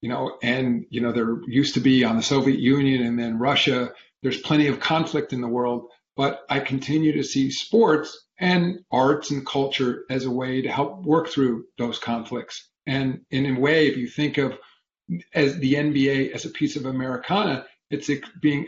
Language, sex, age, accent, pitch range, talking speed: English, male, 40-59, American, 130-150 Hz, 195 wpm